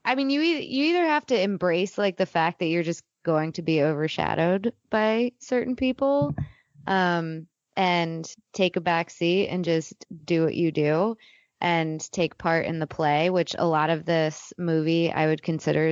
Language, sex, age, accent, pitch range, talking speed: English, female, 20-39, American, 155-190 Hz, 185 wpm